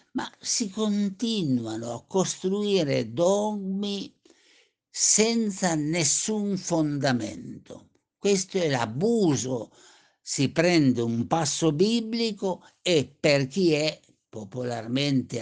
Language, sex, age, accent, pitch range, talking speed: Italian, male, 60-79, native, 125-190 Hz, 85 wpm